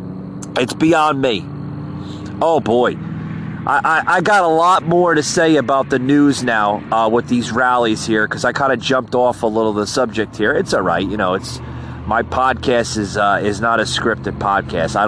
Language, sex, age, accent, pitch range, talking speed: English, male, 30-49, American, 110-155 Hz, 205 wpm